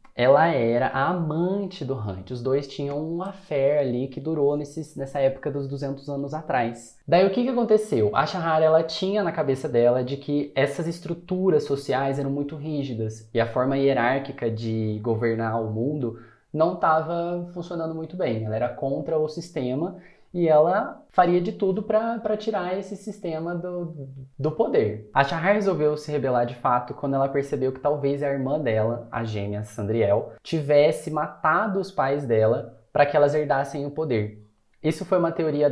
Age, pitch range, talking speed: 20-39, 125-165 Hz, 175 wpm